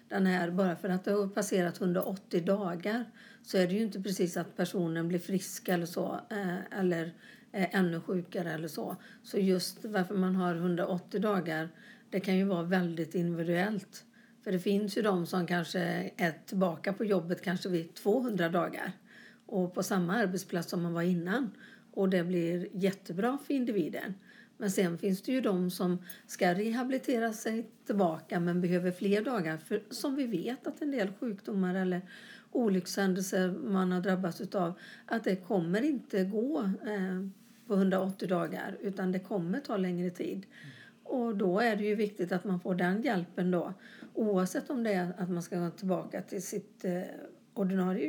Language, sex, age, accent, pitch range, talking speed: Swedish, female, 50-69, native, 180-220 Hz, 170 wpm